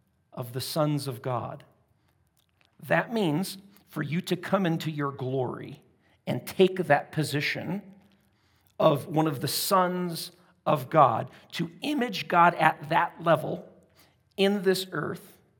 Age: 50-69